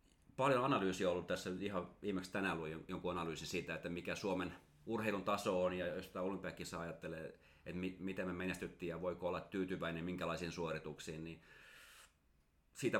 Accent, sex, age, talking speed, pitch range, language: native, male, 30-49, 165 wpm, 85-110 Hz, Finnish